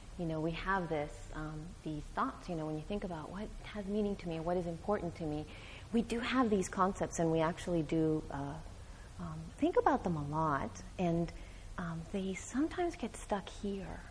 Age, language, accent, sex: 30-49, English, American, female